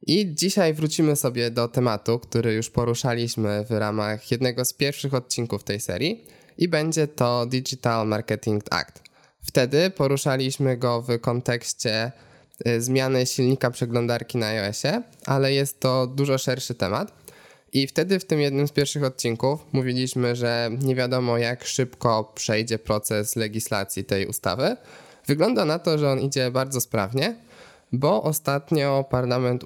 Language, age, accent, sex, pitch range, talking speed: Polish, 20-39, native, male, 115-140 Hz, 140 wpm